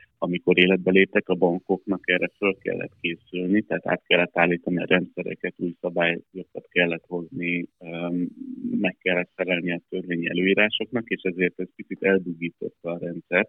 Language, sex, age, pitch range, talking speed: Hungarian, male, 30-49, 90-100 Hz, 140 wpm